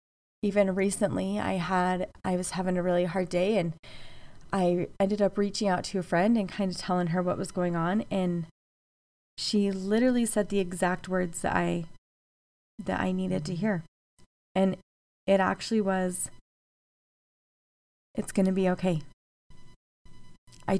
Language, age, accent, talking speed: English, 20-39, American, 155 wpm